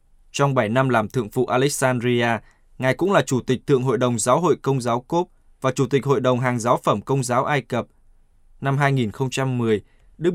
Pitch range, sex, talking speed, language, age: 115-140 Hz, male, 205 wpm, Vietnamese, 20-39